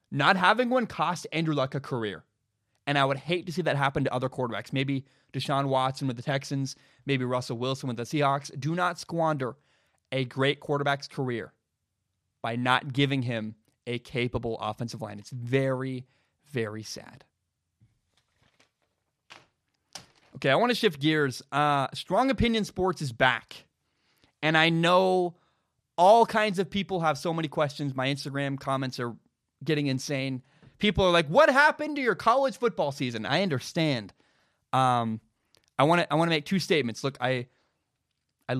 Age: 20-39